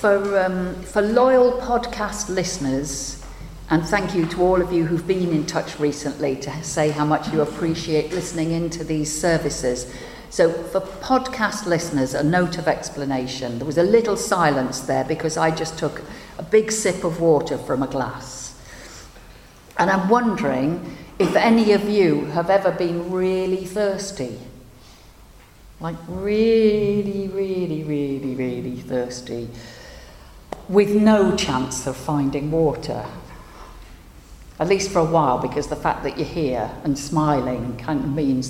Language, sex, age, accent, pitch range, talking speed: English, female, 50-69, British, 135-195 Hz, 145 wpm